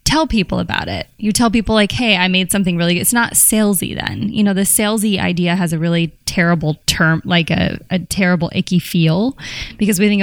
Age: 10-29